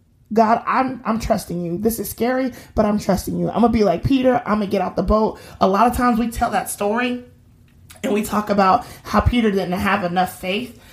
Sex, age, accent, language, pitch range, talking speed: male, 30-49, American, English, 185-235 Hz, 235 wpm